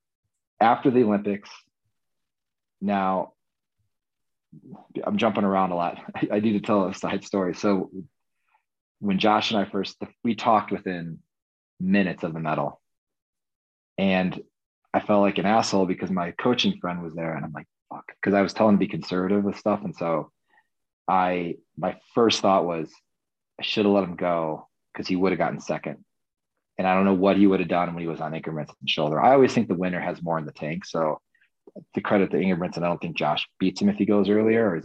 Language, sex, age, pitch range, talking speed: English, male, 30-49, 90-110 Hz, 205 wpm